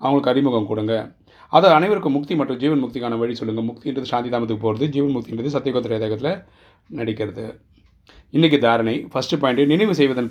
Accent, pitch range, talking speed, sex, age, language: native, 120-135 Hz, 150 wpm, male, 30-49, Tamil